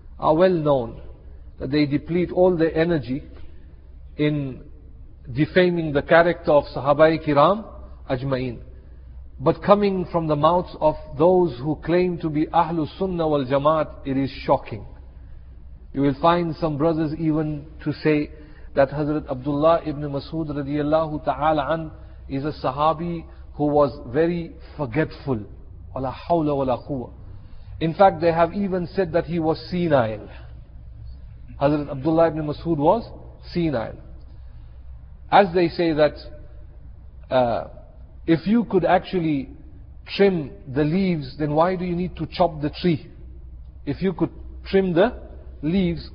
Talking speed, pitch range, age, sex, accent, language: 135 wpm, 125-170 Hz, 50-69, male, Indian, English